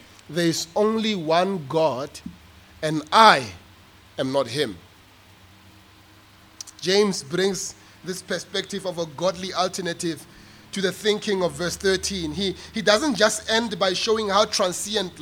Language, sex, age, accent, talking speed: English, male, 30-49, South African, 130 wpm